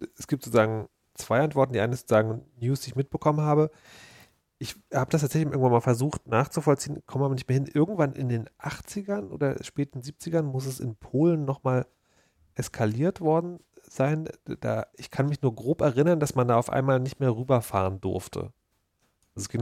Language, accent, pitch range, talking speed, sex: German, German, 110-140 Hz, 185 wpm, male